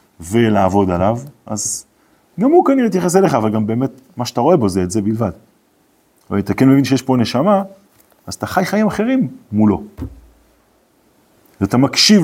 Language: Hebrew